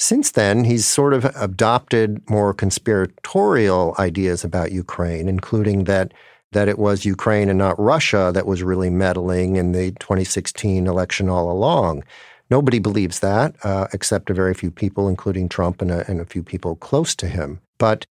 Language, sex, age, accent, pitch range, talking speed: English, male, 50-69, American, 95-115 Hz, 170 wpm